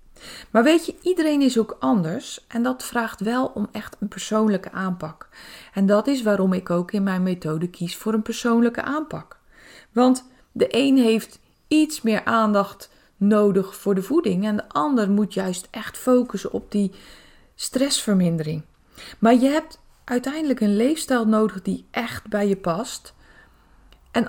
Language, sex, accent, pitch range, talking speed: Dutch, female, Dutch, 190-255 Hz, 160 wpm